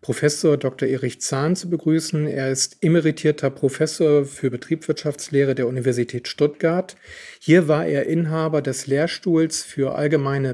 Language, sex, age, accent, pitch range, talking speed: German, male, 40-59, German, 140-170 Hz, 130 wpm